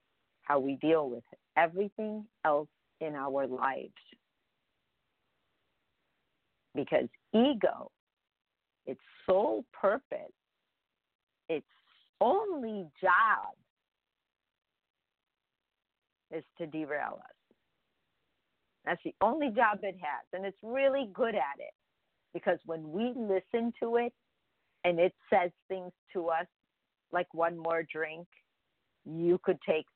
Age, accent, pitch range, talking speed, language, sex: 50-69, American, 155-195 Hz, 105 wpm, English, female